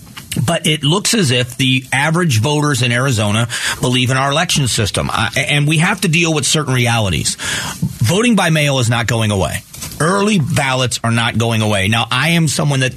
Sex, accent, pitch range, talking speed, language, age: male, American, 125-160 Hz, 190 wpm, English, 40-59